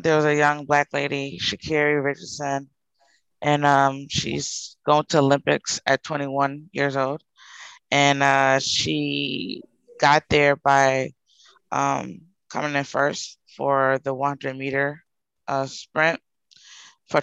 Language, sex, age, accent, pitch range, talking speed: English, female, 20-39, American, 135-150 Hz, 120 wpm